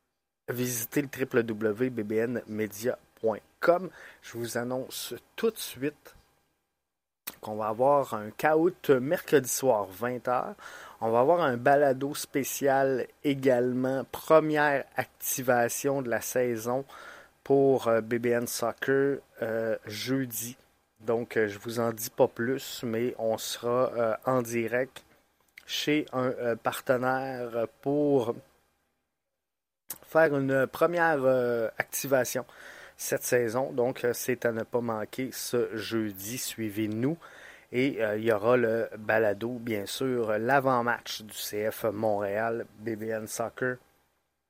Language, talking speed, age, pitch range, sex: French, 115 wpm, 30-49, 110-135 Hz, male